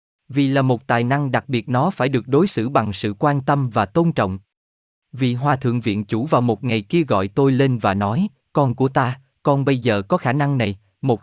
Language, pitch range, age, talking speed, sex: Vietnamese, 110-155 Hz, 20-39, 235 wpm, male